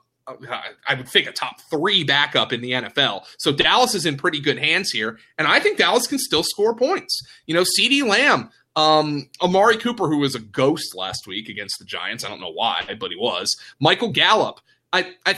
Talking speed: 205 wpm